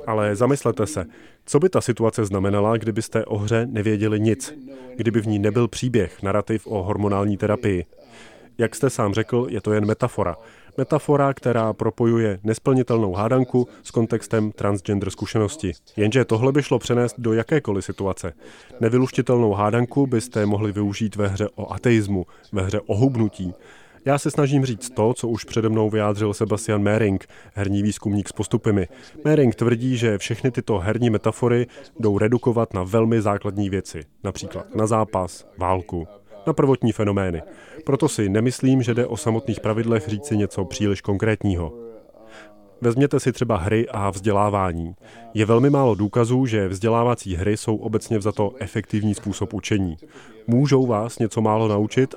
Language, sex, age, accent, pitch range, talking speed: Czech, male, 30-49, native, 105-120 Hz, 150 wpm